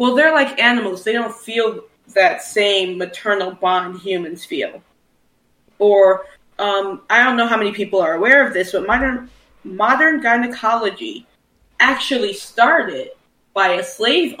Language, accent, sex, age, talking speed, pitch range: English, American, female, 20-39, 140 wpm, 195-245 Hz